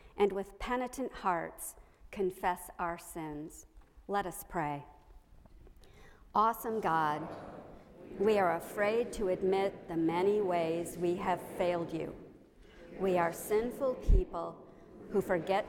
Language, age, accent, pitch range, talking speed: English, 50-69, American, 175-215 Hz, 115 wpm